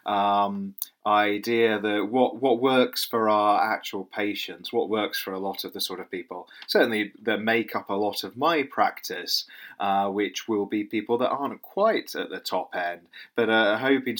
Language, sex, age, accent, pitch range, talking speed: English, male, 30-49, British, 100-125 Hz, 185 wpm